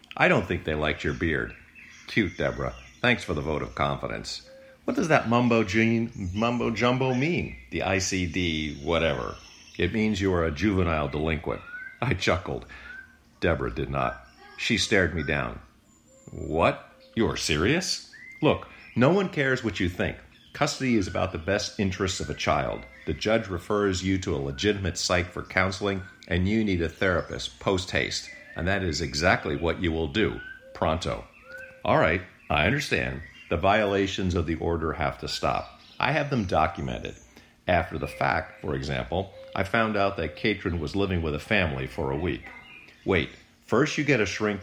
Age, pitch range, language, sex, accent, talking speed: 50-69, 80-110 Hz, English, male, American, 165 wpm